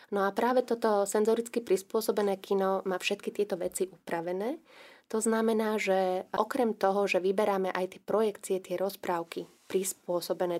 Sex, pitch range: female, 180-215 Hz